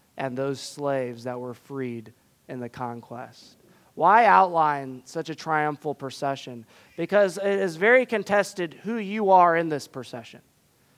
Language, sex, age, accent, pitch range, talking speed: English, male, 20-39, American, 140-195 Hz, 140 wpm